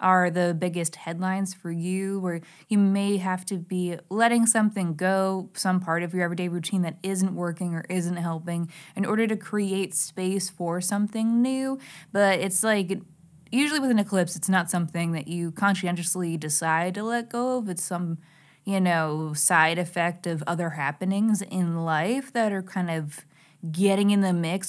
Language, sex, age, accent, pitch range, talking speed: English, female, 20-39, American, 165-200 Hz, 175 wpm